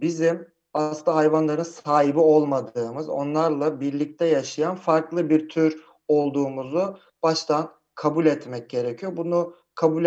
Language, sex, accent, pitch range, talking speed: Turkish, male, native, 150-170 Hz, 105 wpm